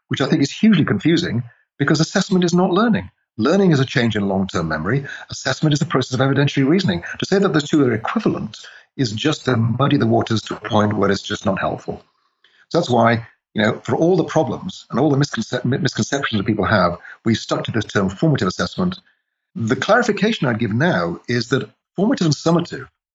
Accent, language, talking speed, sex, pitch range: British, English, 205 wpm, male, 110-160 Hz